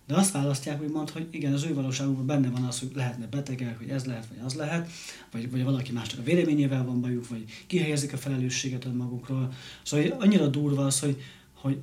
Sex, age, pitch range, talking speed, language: male, 30-49, 125-150 Hz, 215 wpm, Hungarian